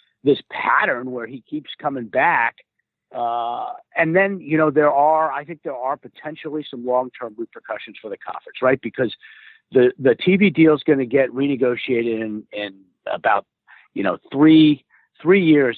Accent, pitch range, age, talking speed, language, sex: American, 125-160 Hz, 50-69, 170 wpm, English, male